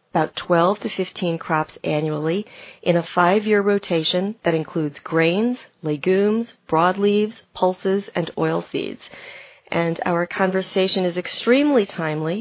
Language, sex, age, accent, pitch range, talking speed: English, female, 40-59, American, 165-200 Hz, 120 wpm